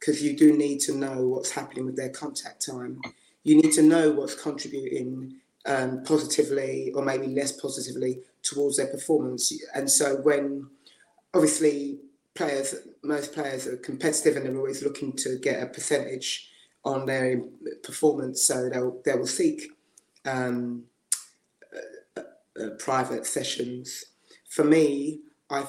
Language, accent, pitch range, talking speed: English, British, 135-155 Hz, 140 wpm